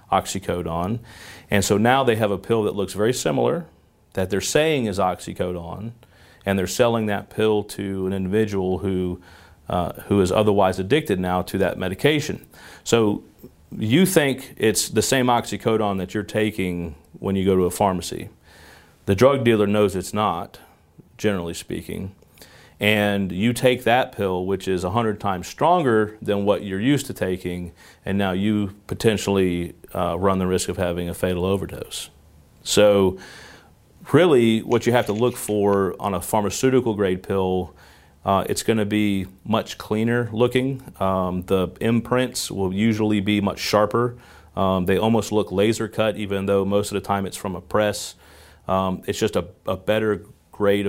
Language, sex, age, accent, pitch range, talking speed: English, male, 40-59, American, 90-110 Hz, 165 wpm